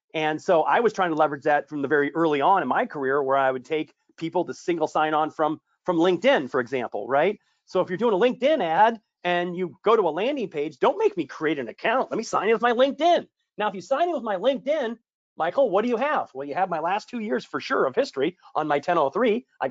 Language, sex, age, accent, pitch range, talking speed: English, male, 30-49, American, 165-235 Hz, 260 wpm